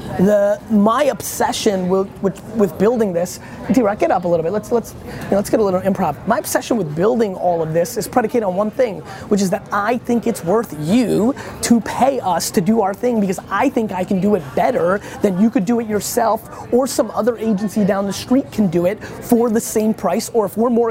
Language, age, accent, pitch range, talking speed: English, 30-49, American, 180-225 Hz, 230 wpm